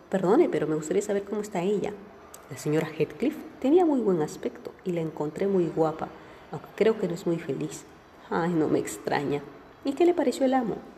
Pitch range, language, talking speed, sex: 155-215 Hz, Spanish, 200 wpm, female